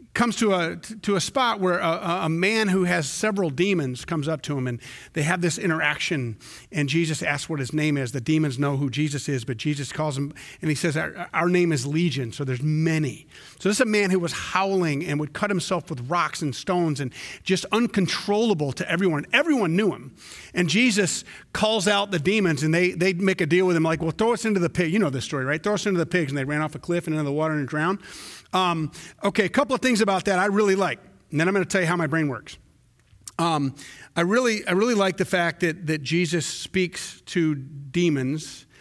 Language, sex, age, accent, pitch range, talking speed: English, male, 40-59, American, 145-185 Hz, 235 wpm